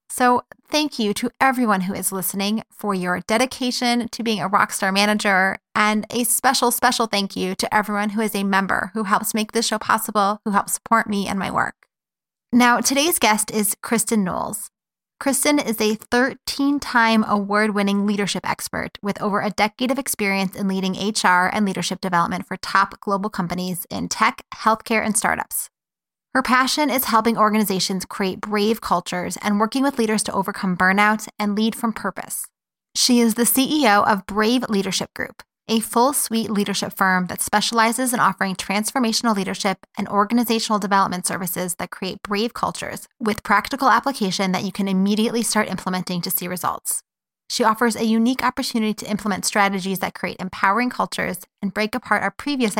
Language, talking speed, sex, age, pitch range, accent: English, 170 wpm, female, 20-39, 195-230 Hz, American